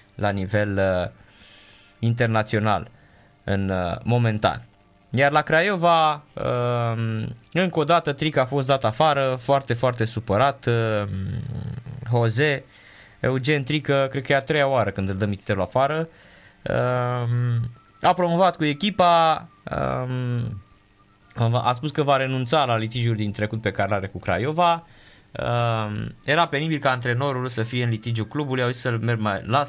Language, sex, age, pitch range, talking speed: Romanian, male, 20-39, 105-140 Hz, 145 wpm